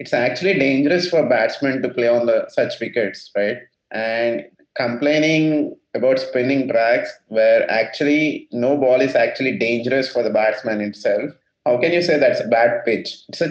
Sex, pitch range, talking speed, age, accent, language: male, 110-145 Hz, 170 wpm, 30-49, Indian, English